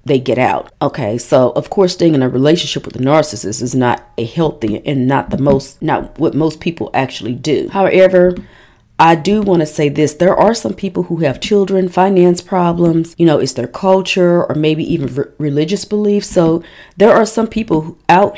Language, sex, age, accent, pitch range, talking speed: English, female, 40-59, American, 140-175 Hz, 200 wpm